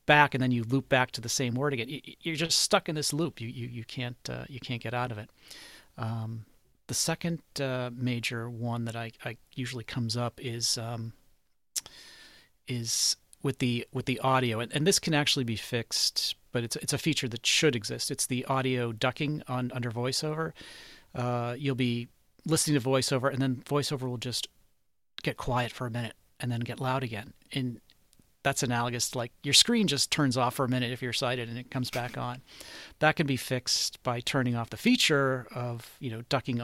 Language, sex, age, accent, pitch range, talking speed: English, male, 40-59, American, 115-135 Hz, 205 wpm